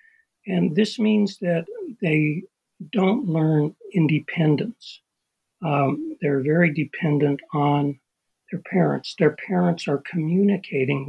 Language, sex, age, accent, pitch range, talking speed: English, male, 60-79, American, 145-180 Hz, 105 wpm